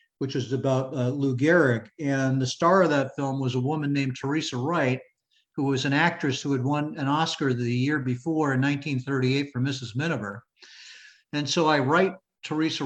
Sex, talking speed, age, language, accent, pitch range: male, 185 wpm, 50-69, English, American, 130-155 Hz